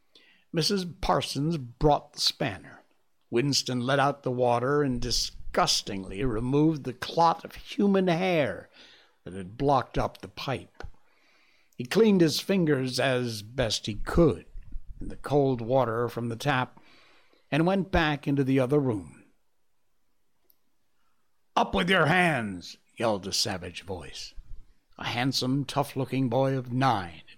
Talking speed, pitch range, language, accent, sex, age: 130 wpm, 120-160 Hz, English, American, male, 60-79